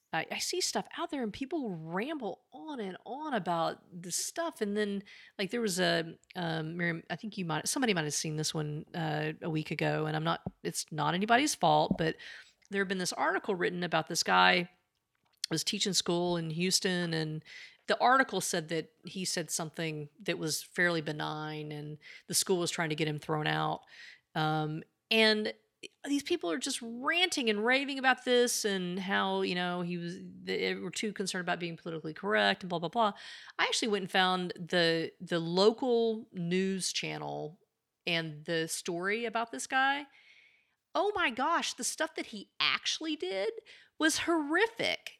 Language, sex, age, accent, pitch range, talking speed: English, female, 40-59, American, 165-230 Hz, 180 wpm